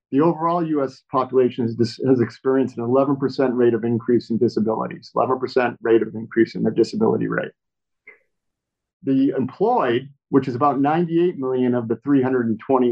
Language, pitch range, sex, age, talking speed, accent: English, 115-135 Hz, male, 50-69, 150 wpm, American